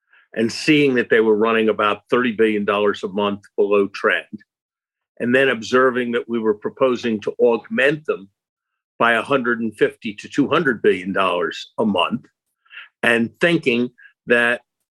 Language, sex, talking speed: English, male, 135 wpm